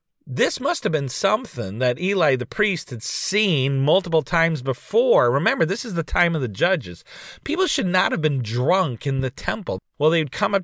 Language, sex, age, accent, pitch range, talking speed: English, male, 40-59, American, 145-225 Hz, 195 wpm